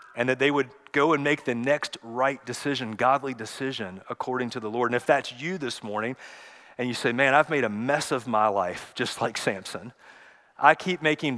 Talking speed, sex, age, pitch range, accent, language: 210 wpm, male, 40-59, 125-160 Hz, American, English